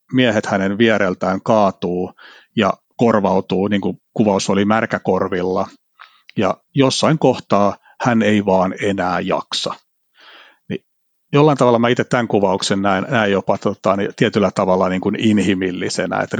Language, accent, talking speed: Finnish, native, 130 wpm